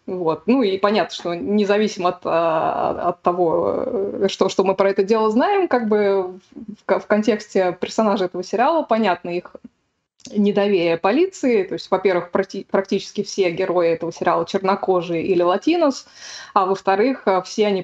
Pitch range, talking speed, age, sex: 180-215 Hz, 150 wpm, 20-39, female